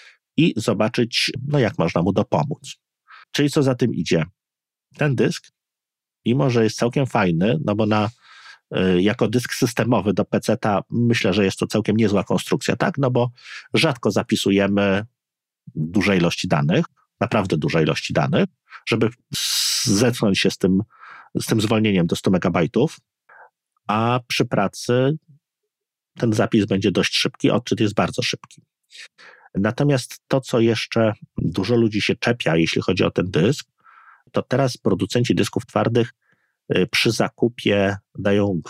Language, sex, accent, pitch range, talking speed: Polish, male, native, 100-125 Hz, 140 wpm